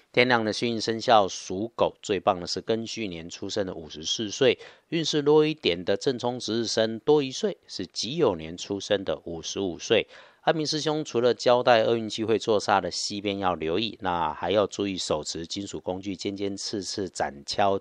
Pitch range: 90-115 Hz